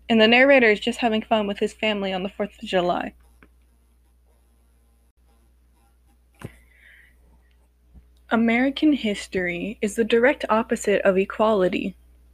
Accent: American